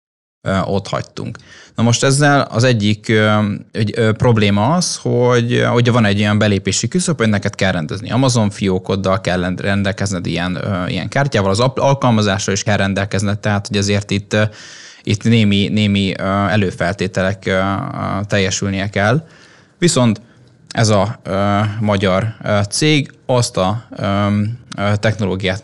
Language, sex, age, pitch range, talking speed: Hungarian, male, 20-39, 95-120 Hz, 120 wpm